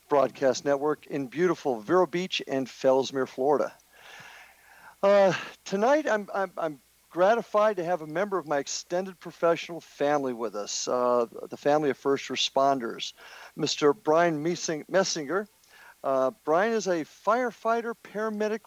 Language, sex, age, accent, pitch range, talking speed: English, male, 50-69, American, 135-185 Hz, 130 wpm